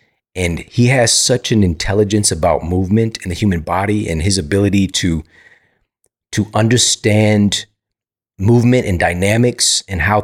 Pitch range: 90-115 Hz